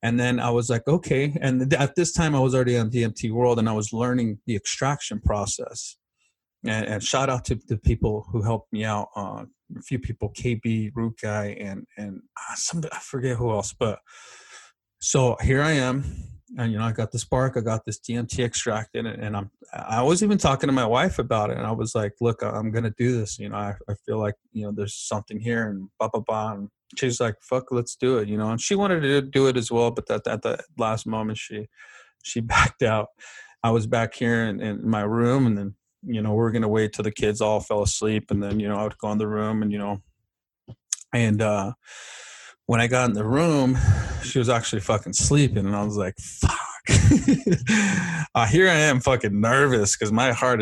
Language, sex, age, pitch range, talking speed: English, male, 30-49, 105-125 Hz, 230 wpm